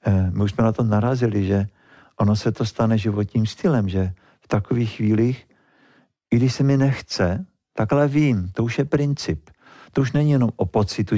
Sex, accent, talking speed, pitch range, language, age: male, native, 185 wpm, 95-115 Hz, Czech, 50-69